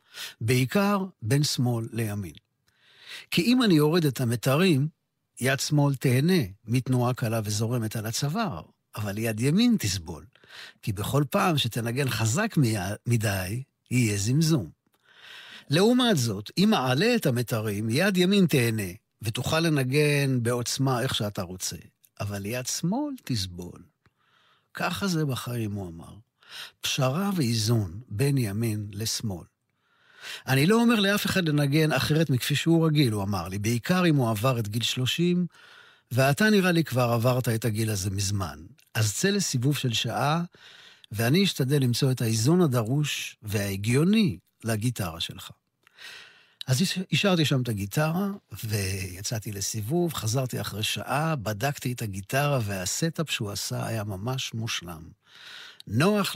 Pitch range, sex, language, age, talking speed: 110-150 Hz, male, Hebrew, 50-69, 130 wpm